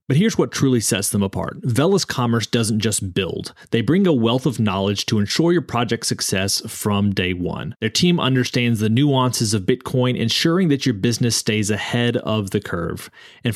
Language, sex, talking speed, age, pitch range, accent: English, male, 190 wpm, 30-49, 100-125 Hz, American